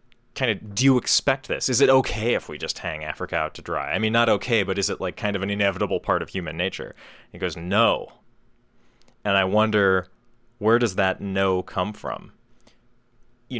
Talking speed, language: 205 wpm, English